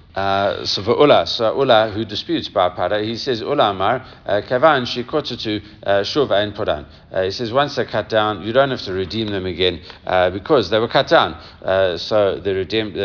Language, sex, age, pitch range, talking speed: English, male, 60-79, 95-120 Hz, 170 wpm